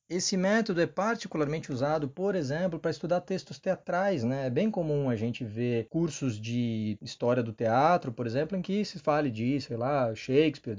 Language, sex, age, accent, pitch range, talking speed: Portuguese, male, 20-39, Brazilian, 120-165 Hz, 185 wpm